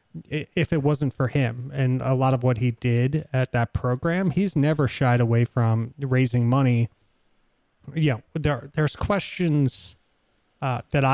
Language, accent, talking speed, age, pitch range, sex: English, American, 145 wpm, 30-49, 120-145 Hz, male